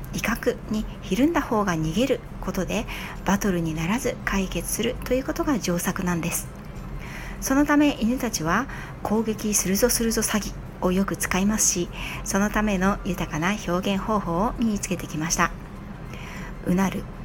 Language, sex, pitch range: Japanese, female, 180-245 Hz